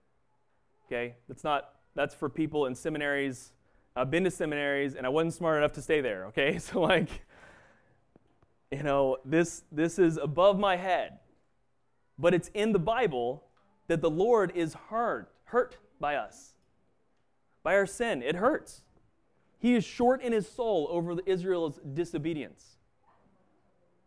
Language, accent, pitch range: English, American, 135-190 Hz